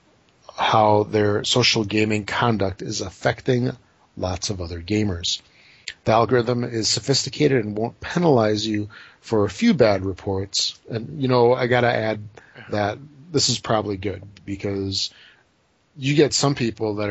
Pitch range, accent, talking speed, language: 100-120 Hz, American, 145 wpm, English